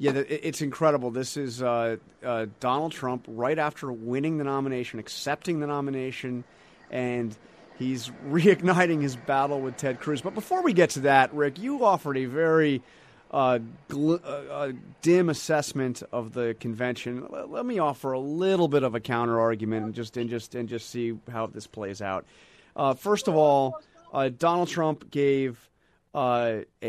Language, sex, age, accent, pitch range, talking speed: English, male, 30-49, American, 120-150 Hz, 165 wpm